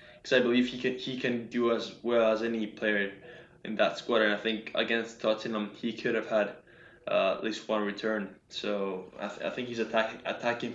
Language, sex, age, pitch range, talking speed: English, male, 10-29, 110-130 Hz, 220 wpm